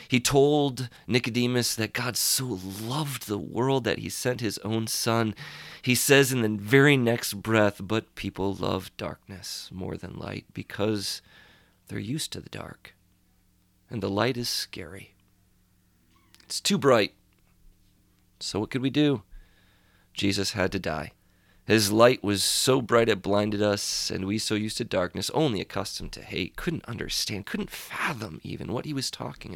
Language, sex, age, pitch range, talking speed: English, male, 40-59, 95-125 Hz, 160 wpm